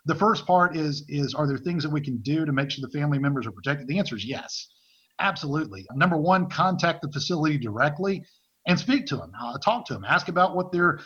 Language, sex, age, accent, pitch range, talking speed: English, male, 50-69, American, 140-175 Hz, 235 wpm